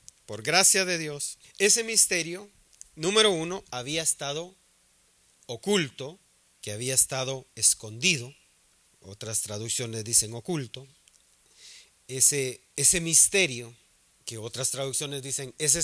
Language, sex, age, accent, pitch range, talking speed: Spanish, male, 40-59, Mexican, 125-190 Hz, 100 wpm